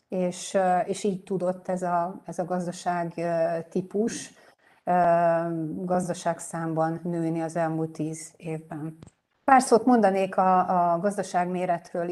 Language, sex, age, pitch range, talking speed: Hungarian, female, 30-49, 175-205 Hz, 115 wpm